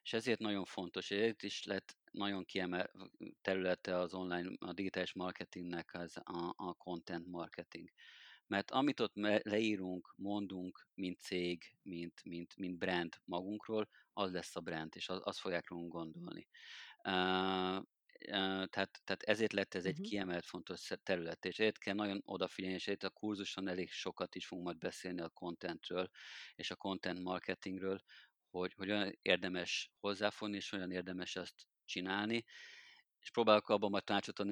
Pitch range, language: 90-100 Hz, Hungarian